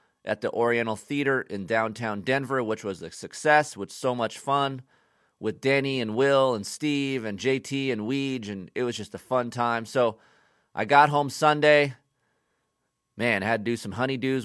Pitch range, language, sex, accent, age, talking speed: 115-145 Hz, English, male, American, 30-49, 185 wpm